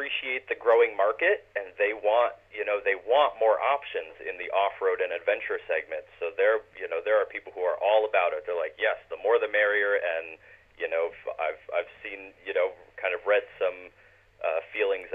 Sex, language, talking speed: male, English, 205 wpm